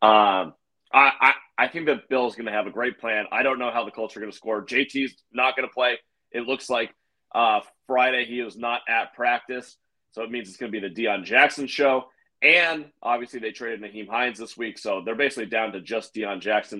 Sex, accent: male, American